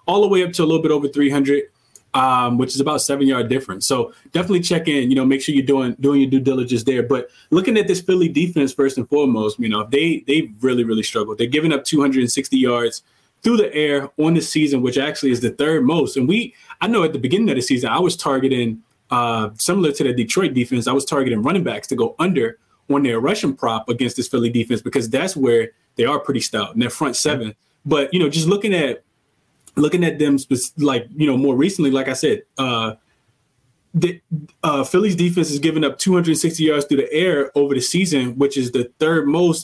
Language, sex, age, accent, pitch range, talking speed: English, male, 20-39, American, 130-155 Hz, 235 wpm